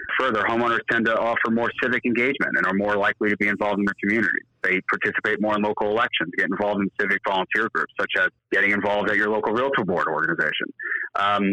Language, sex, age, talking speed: English, male, 30-49, 215 wpm